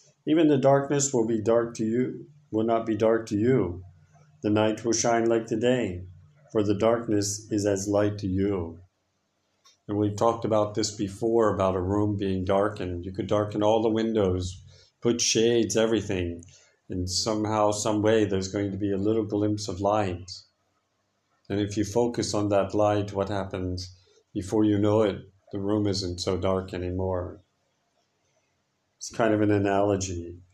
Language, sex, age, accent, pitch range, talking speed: English, male, 50-69, American, 100-115 Hz, 170 wpm